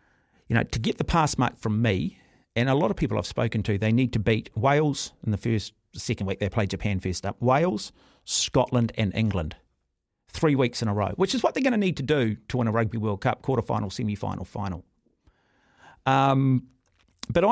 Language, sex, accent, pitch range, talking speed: English, male, Australian, 100-140 Hz, 210 wpm